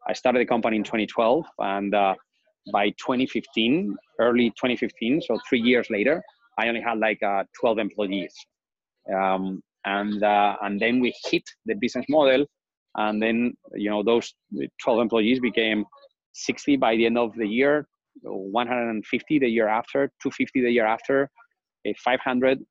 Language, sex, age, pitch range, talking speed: English, male, 30-49, 105-125 Hz, 150 wpm